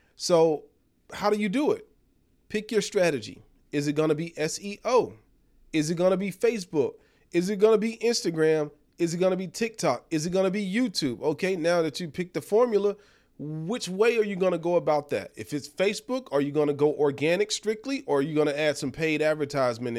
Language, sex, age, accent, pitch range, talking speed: English, male, 40-59, American, 145-190 Hz, 220 wpm